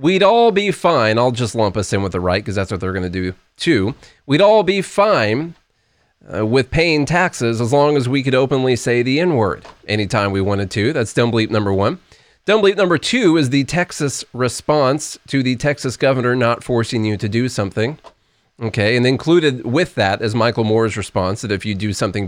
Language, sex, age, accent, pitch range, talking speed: English, male, 30-49, American, 105-145 Hz, 210 wpm